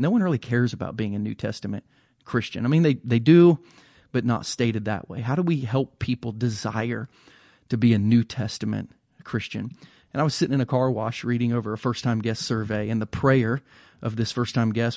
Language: English